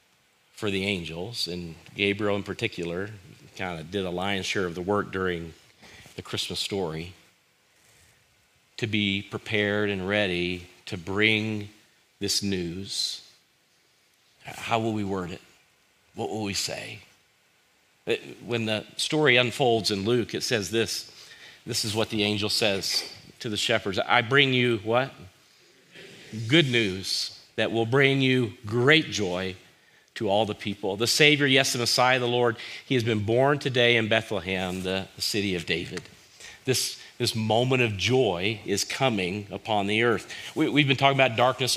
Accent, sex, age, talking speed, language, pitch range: American, male, 40-59, 155 wpm, English, 100-130 Hz